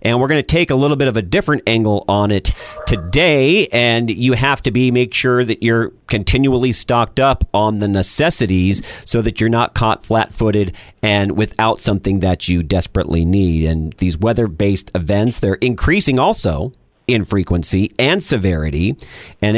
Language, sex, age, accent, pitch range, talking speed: English, male, 40-59, American, 95-125 Hz, 175 wpm